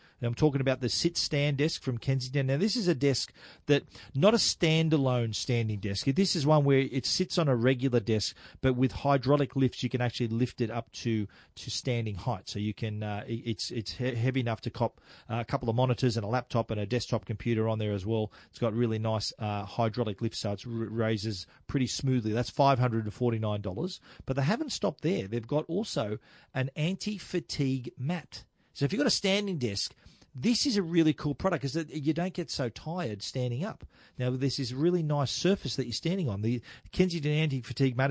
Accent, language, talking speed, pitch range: Australian, English, 210 wpm, 115-145 Hz